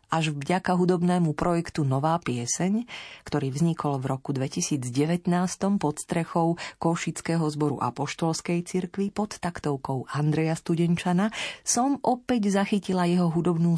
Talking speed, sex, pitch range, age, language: 120 wpm, female, 150-195 Hz, 40-59, Slovak